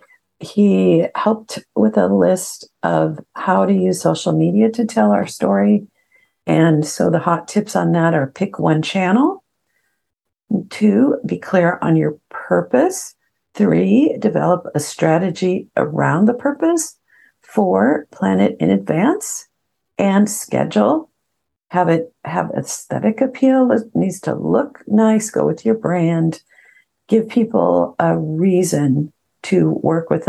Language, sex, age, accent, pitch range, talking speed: English, female, 50-69, American, 160-220 Hz, 135 wpm